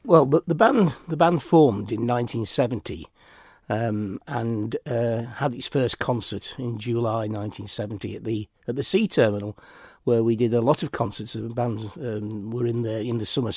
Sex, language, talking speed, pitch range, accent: male, English, 195 wpm, 115-135 Hz, British